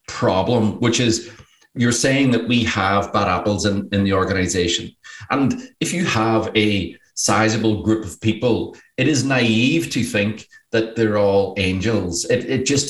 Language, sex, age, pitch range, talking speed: English, male, 40-59, 100-115 Hz, 165 wpm